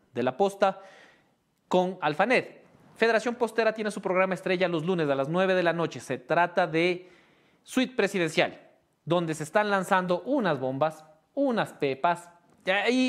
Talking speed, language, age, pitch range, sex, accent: 150 wpm, English, 40-59, 155-210 Hz, male, Mexican